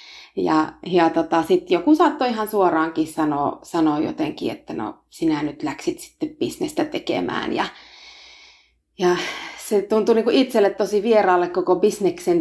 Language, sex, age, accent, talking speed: Finnish, female, 30-49, native, 140 wpm